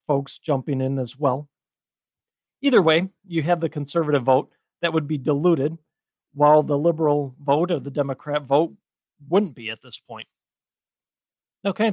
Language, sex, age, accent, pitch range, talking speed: English, male, 40-59, American, 145-185 Hz, 155 wpm